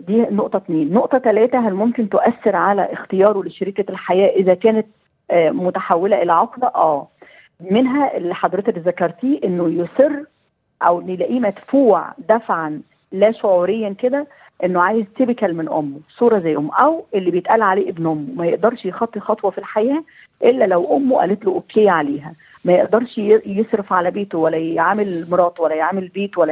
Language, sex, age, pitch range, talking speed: Arabic, female, 40-59, 175-230 Hz, 160 wpm